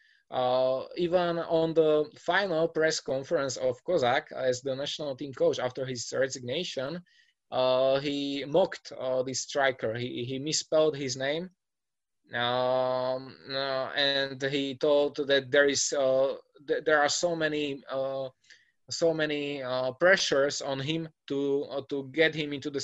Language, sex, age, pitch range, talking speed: English, male, 20-39, 130-150 Hz, 140 wpm